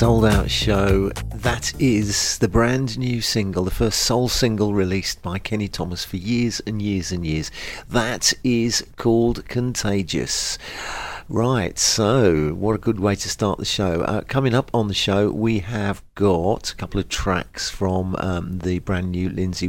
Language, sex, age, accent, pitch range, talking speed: English, male, 40-59, British, 90-115 Hz, 170 wpm